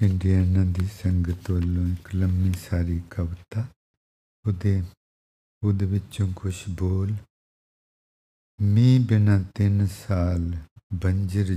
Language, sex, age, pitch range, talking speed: English, male, 50-69, 85-105 Hz, 65 wpm